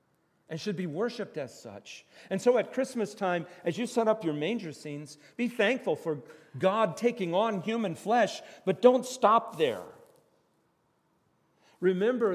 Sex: male